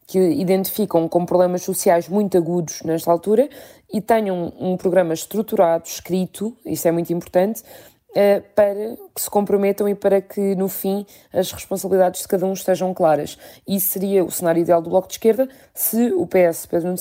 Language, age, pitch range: Portuguese, 20-39, 170-200 Hz